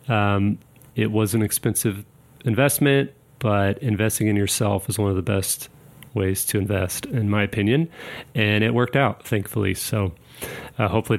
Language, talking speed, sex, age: English, 155 wpm, male, 30-49